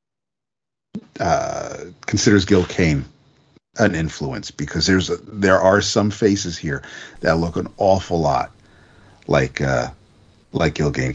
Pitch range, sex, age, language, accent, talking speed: 80-110 Hz, male, 50-69, English, American, 130 wpm